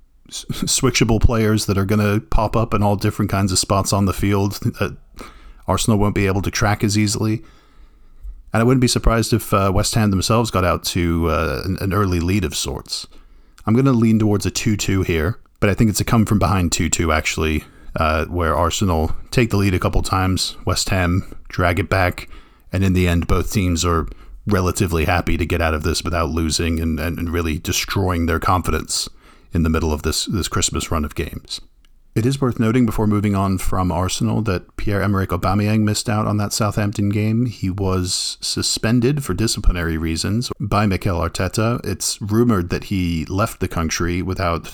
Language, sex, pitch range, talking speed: English, male, 85-105 Hz, 190 wpm